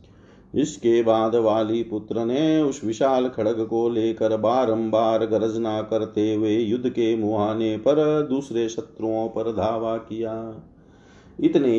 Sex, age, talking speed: male, 40-59, 120 wpm